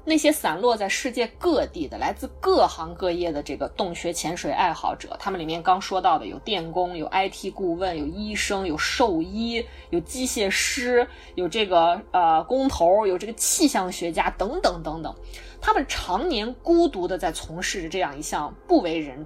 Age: 20-39